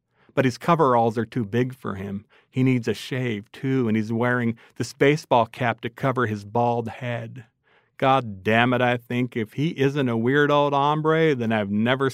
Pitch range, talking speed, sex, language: 115-135 Hz, 195 wpm, male, English